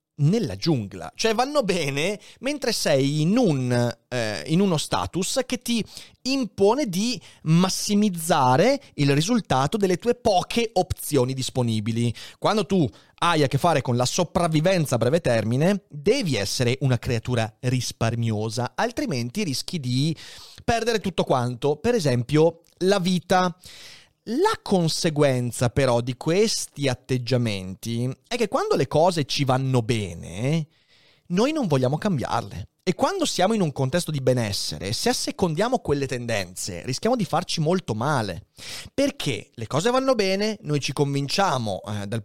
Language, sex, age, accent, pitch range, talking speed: Italian, male, 30-49, native, 125-200 Hz, 135 wpm